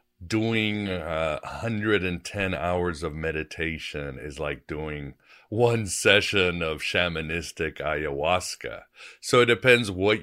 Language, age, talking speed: English, 60-79, 105 wpm